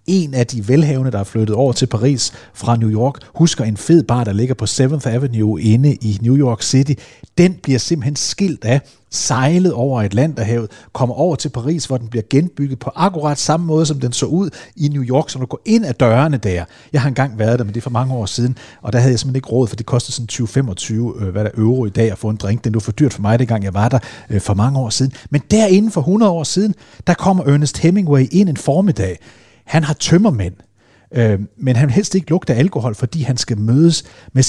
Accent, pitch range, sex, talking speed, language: native, 110-145 Hz, male, 240 wpm, Danish